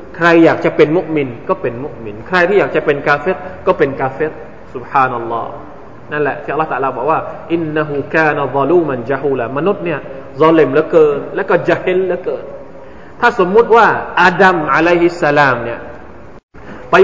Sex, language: male, Thai